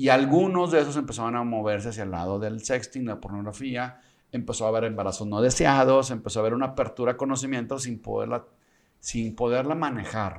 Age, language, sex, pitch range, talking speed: 40-59, Spanish, male, 105-130 Hz, 190 wpm